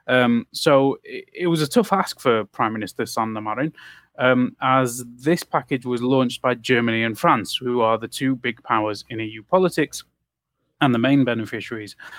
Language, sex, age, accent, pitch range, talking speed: Finnish, male, 30-49, British, 115-140 Hz, 170 wpm